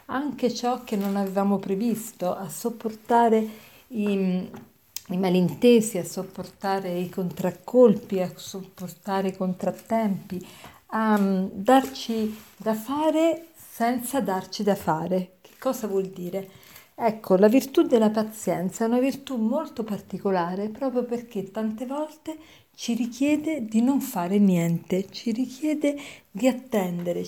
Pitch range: 185-235 Hz